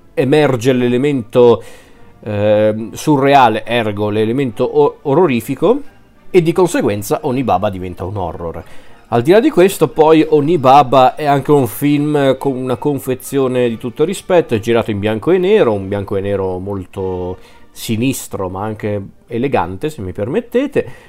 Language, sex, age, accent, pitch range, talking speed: Italian, male, 40-59, native, 110-130 Hz, 140 wpm